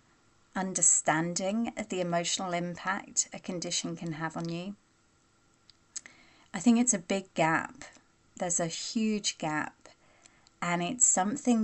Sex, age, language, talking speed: female, 30-49, English, 125 wpm